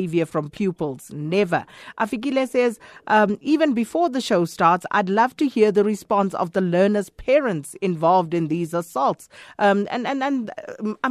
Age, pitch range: 40-59, 180-235 Hz